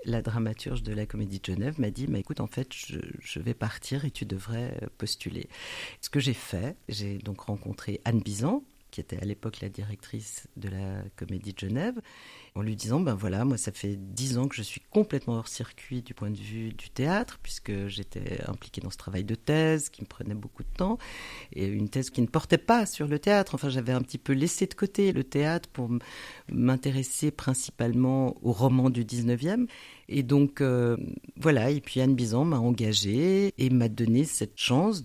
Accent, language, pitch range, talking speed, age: French, French, 110-150 Hz, 205 wpm, 50-69